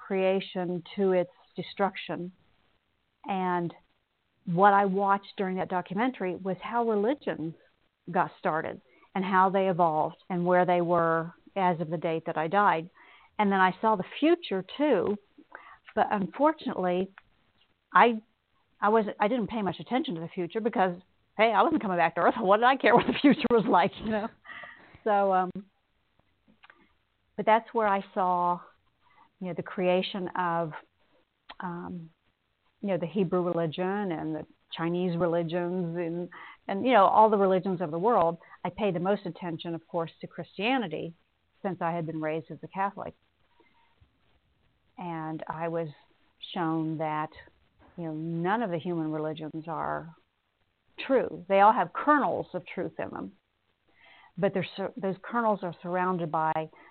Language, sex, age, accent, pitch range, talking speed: English, female, 50-69, American, 170-205 Hz, 155 wpm